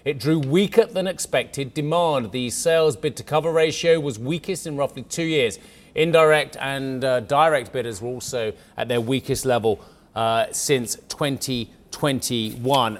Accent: British